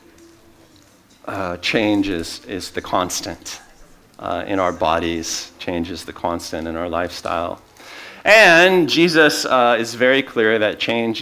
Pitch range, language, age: 85-110 Hz, English, 50-69